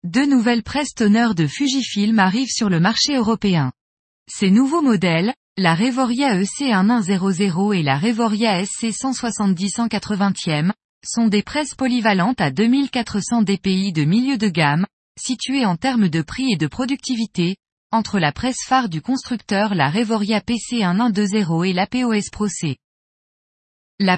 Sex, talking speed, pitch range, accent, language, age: female, 140 wpm, 185-245 Hz, French, French, 20-39